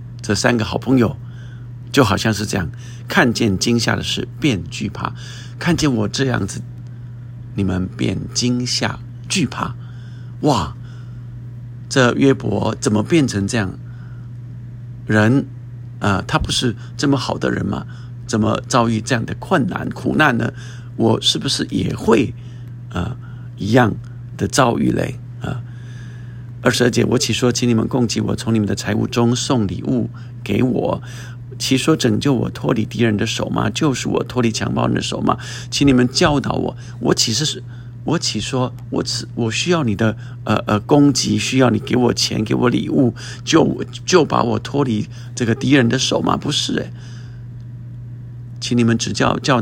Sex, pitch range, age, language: male, 115-125 Hz, 50-69, Chinese